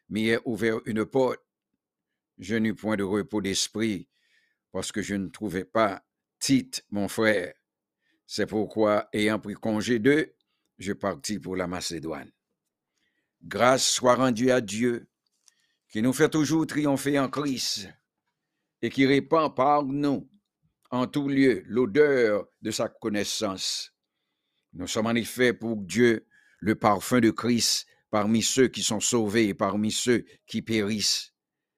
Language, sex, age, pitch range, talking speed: English, male, 60-79, 105-125 Hz, 140 wpm